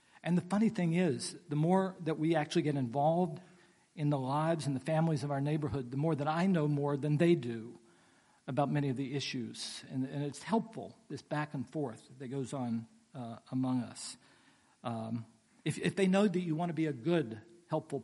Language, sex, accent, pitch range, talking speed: English, male, American, 130-170 Hz, 205 wpm